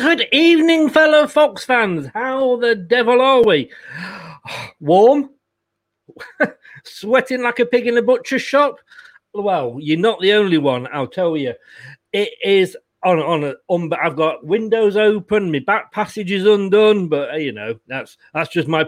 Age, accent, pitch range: 40-59, British, 165-230 Hz